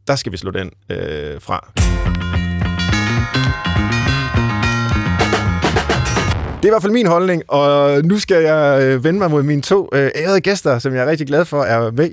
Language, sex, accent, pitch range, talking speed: Danish, male, native, 110-145 Hz, 170 wpm